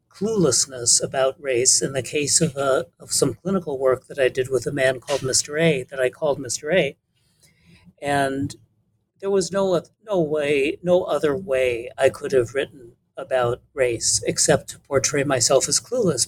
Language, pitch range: English, 130-160 Hz